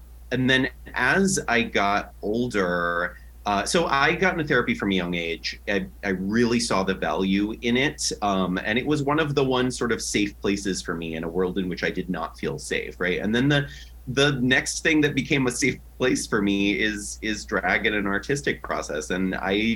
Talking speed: 215 wpm